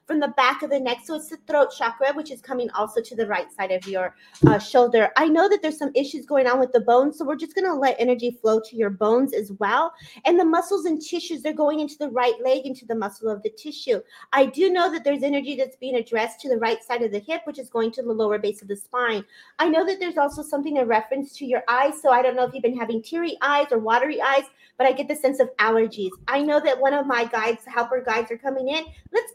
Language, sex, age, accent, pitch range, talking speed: English, female, 40-59, American, 225-290 Hz, 270 wpm